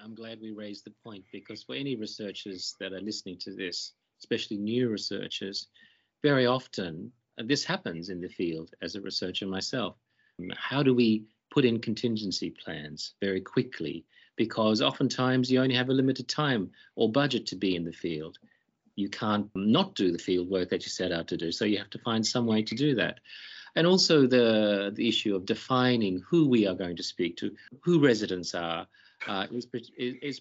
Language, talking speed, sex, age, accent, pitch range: English, 185 wpm, male, 50-69, Australian, 95-125 Hz